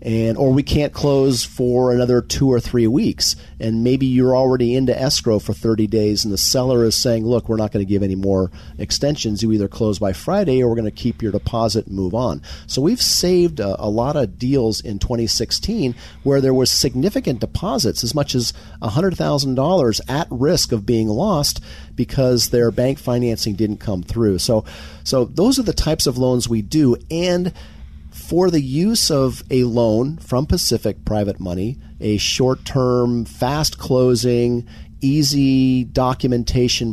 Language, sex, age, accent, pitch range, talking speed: English, male, 40-59, American, 105-130 Hz, 175 wpm